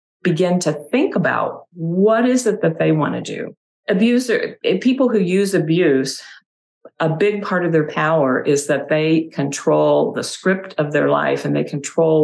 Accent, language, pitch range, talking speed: American, English, 145-170 Hz, 165 wpm